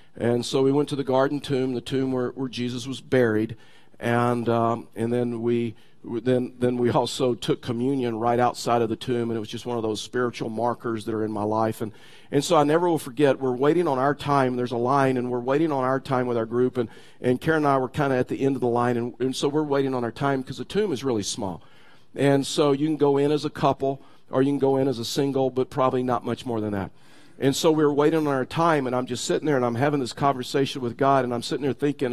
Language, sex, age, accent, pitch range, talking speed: English, male, 50-69, American, 120-145 Hz, 275 wpm